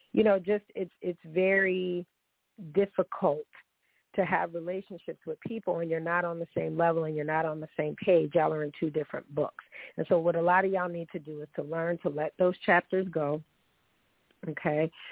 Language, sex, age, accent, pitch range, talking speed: English, female, 40-59, American, 165-200 Hz, 200 wpm